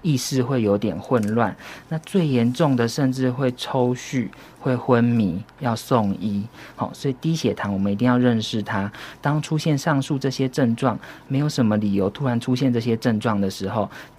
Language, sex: Chinese, male